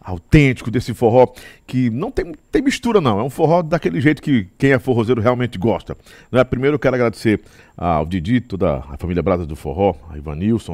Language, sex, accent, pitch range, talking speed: Portuguese, male, Brazilian, 105-155 Hz, 200 wpm